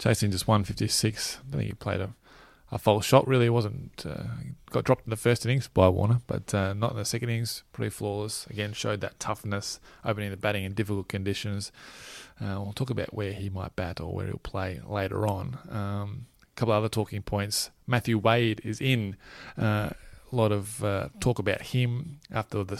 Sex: male